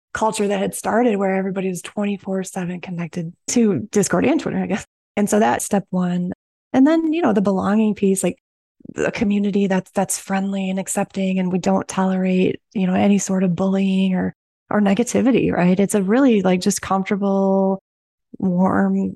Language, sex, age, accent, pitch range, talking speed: English, female, 20-39, American, 190-215 Hz, 175 wpm